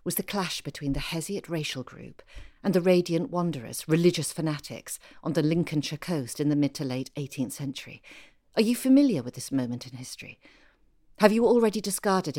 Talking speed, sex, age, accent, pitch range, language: 180 wpm, female, 50-69, British, 140-190 Hz, English